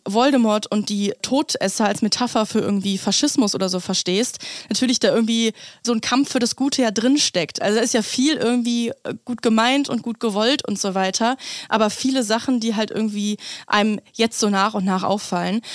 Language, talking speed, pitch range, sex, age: German, 190 wpm, 205-245 Hz, female, 20-39